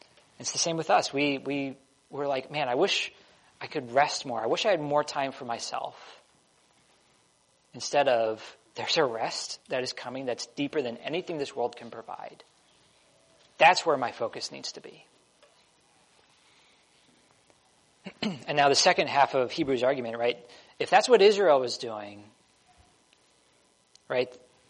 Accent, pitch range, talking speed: American, 120-150 Hz, 155 wpm